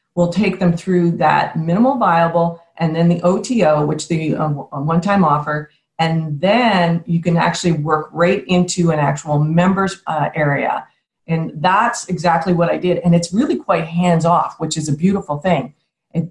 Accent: American